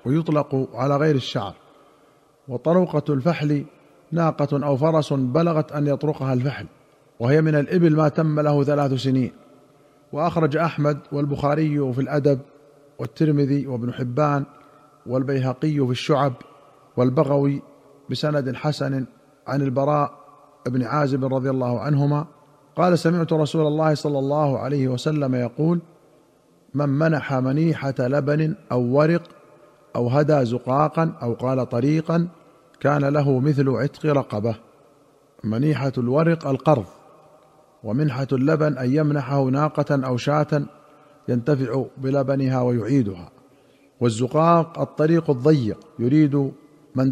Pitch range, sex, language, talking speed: 130-150 Hz, male, Arabic, 110 wpm